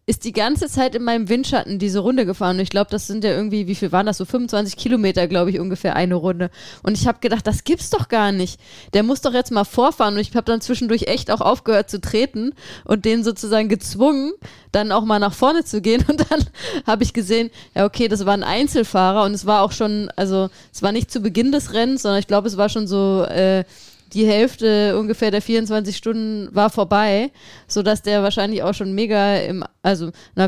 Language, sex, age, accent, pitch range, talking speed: German, female, 20-39, German, 195-235 Hz, 225 wpm